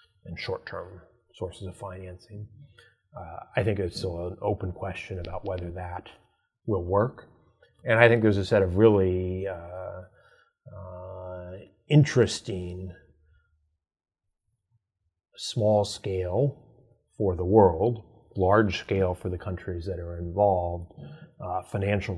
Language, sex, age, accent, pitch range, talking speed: English, male, 30-49, American, 90-105 Hz, 115 wpm